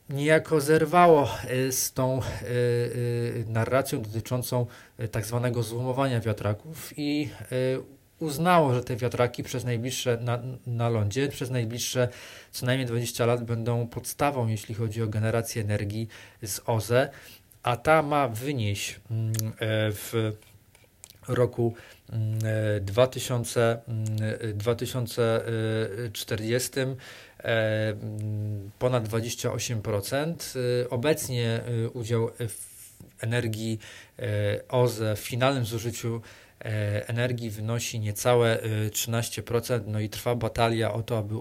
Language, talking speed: Polish, 95 wpm